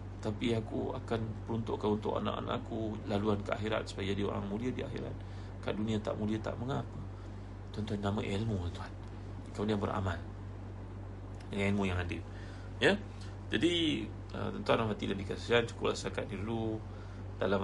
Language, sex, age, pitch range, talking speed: Malay, male, 30-49, 100-110 Hz, 145 wpm